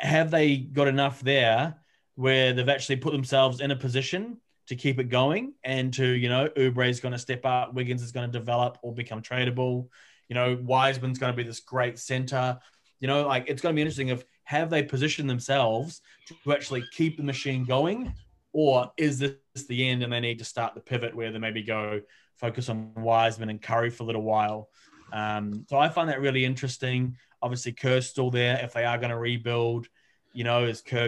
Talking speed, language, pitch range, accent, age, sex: 210 wpm, English, 120-140 Hz, Australian, 20-39, male